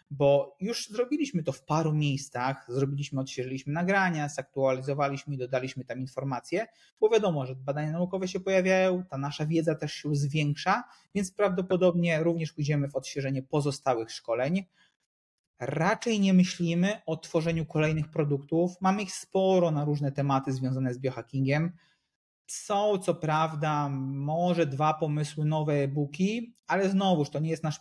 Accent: native